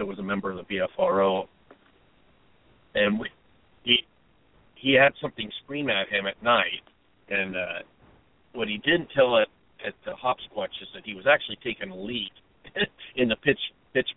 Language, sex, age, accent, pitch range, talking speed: English, male, 50-69, American, 100-125 Hz, 165 wpm